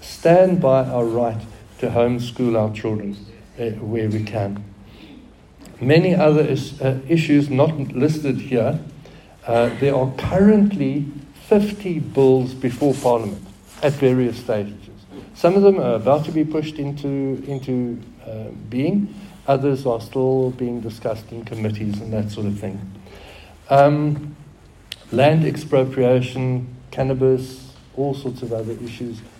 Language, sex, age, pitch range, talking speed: English, male, 60-79, 110-140 Hz, 130 wpm